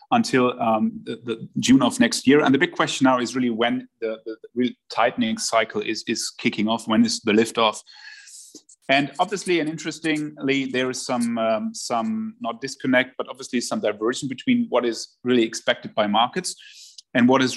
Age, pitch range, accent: 30-49, 115-160 Hz, German